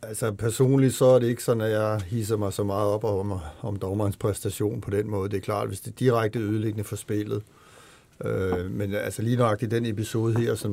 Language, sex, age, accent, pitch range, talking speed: Danish, male, 60-79, native, 110-135 Hz, 225 wpm